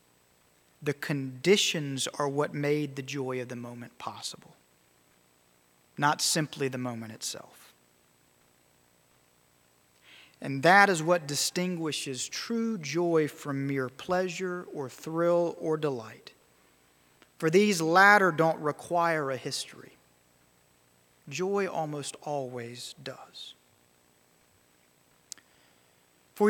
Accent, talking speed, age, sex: American, 95 wpm, 40-59, male